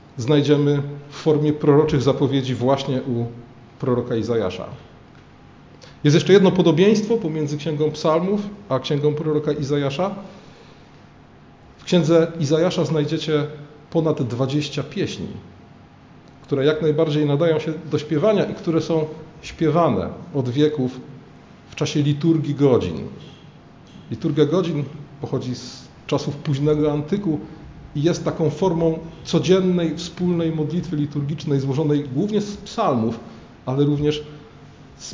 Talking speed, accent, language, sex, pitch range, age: 115 wpm, native, Polish, male, 135-160 Hz, 40-59